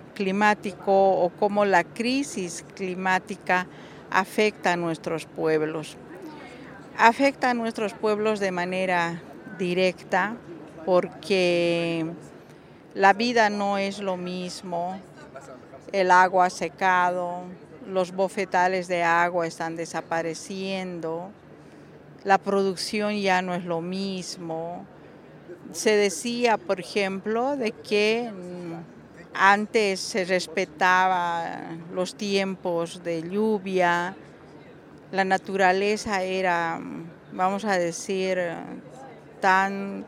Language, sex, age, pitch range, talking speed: English, female, 50-69, 175-210 Hz, 90 wpm